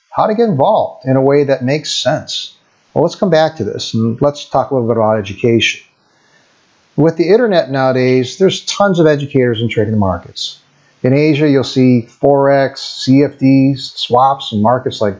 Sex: male